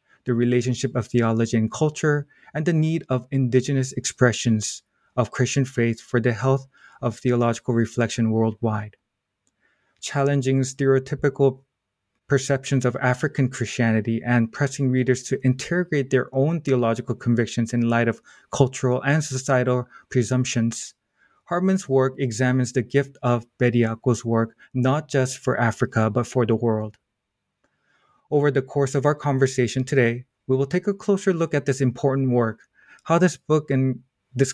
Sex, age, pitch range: male, 20-39, 120-140 Hz